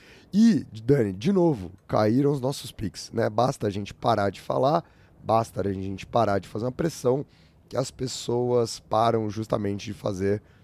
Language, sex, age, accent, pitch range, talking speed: Portuguese, male, 20-39, Brazilian, 105-145 Hz, 170 wpm